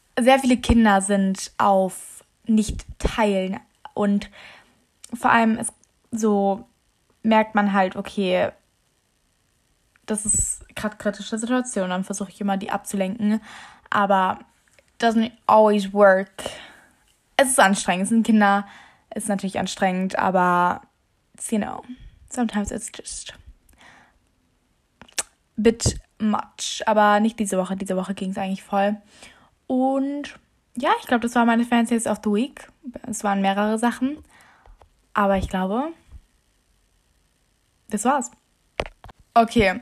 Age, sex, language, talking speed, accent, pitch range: 10-29, female, German, 125 wpm, German, 195-230 Hz